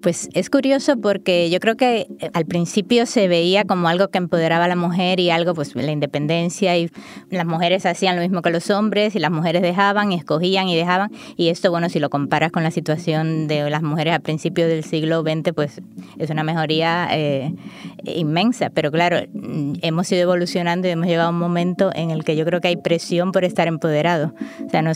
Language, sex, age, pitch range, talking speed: Spanish, female, 20-39, 170-195 Hz, 210 wpm